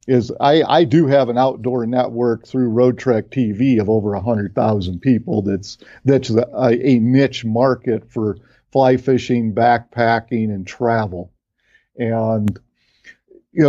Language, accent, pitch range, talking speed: English, American, 115-140 Hz, 135 wpm